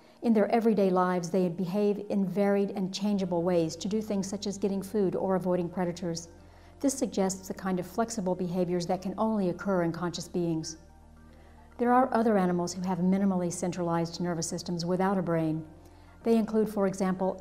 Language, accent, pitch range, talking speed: English, American, 175-200 Hz, 180 wpm